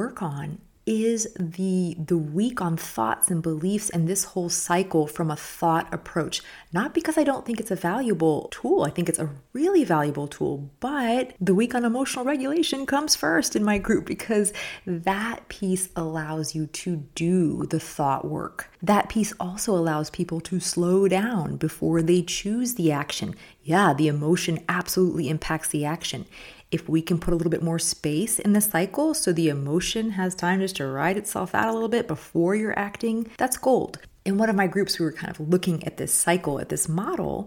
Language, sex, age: English, female, 30-49